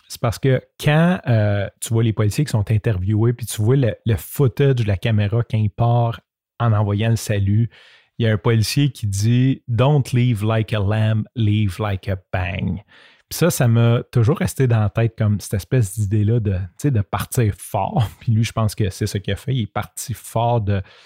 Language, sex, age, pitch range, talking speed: French, male, 30-49, 105-125 Hz, 220 wpm